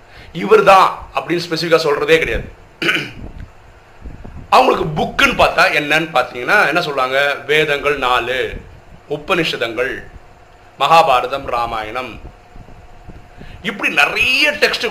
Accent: native